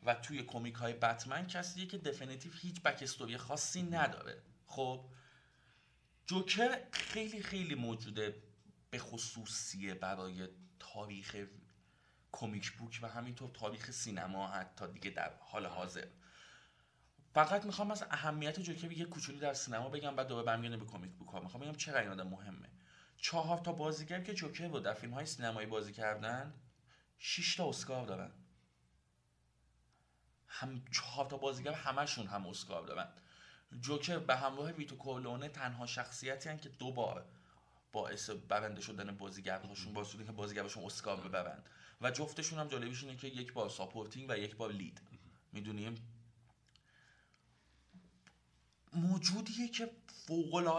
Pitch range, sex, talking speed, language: 105-150 Hz, male, 130 wpm, Persian